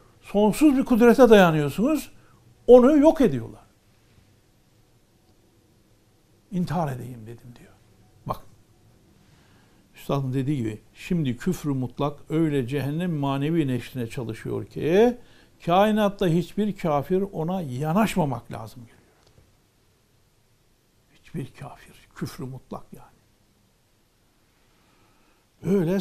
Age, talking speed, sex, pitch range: 60-79, 85 wpm, male, 120-180 Hz